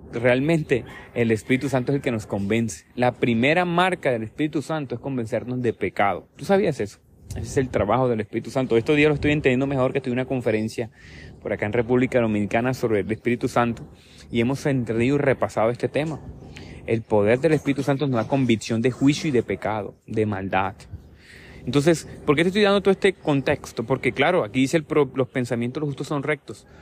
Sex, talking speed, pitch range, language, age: male, 205 wpm, 110-140 Hz, Spanish, 30-49